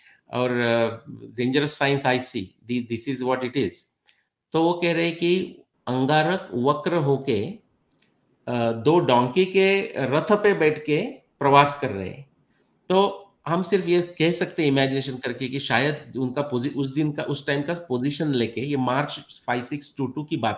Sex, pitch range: male, 125-165 Hz